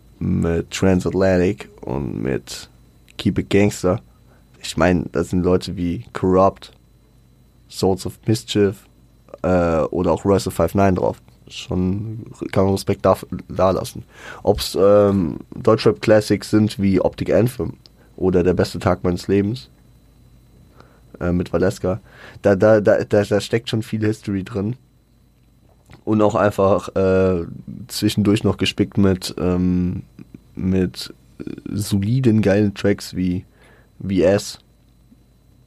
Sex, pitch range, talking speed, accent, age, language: male, 90-105 Hz, 125 wpm, German, 20-39, German